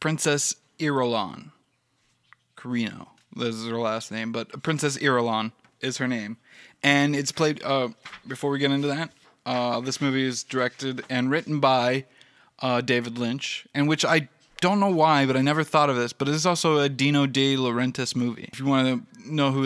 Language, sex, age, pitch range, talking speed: English, male, 20-39, 125-145 Hz, 185 wpm